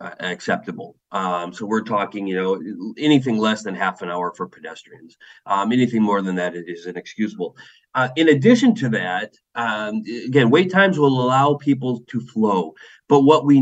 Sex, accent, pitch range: male, American, 105-135 Hz